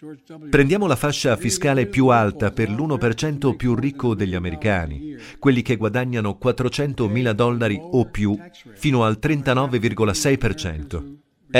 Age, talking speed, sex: 50-69, 115 wpm, male